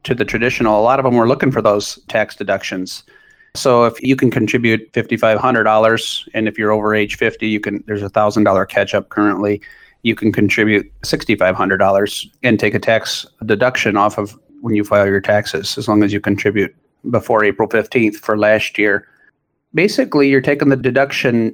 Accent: American